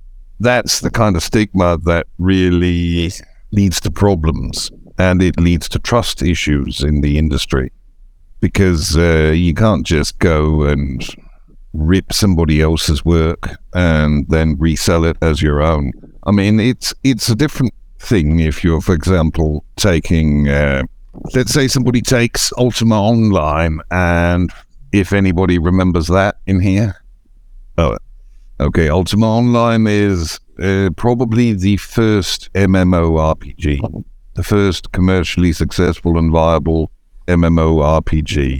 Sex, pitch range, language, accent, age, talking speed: male, 80-105 Hz, English, British, 60-79, 125 wpm